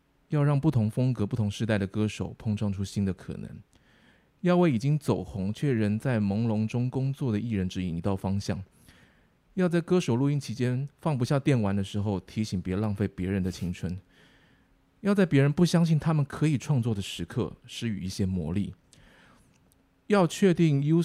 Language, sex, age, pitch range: Chinese, male, 20-39, 100-140 Hz